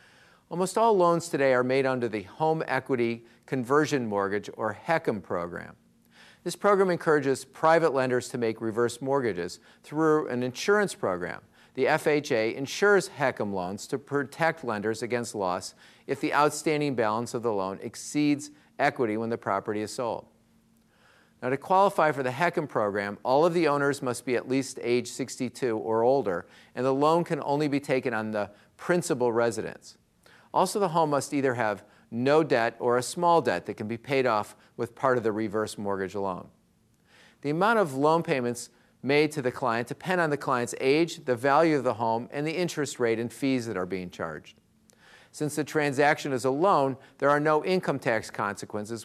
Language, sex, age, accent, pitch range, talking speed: English, male, 50-69, American, 115-155 Hz, 180 wpm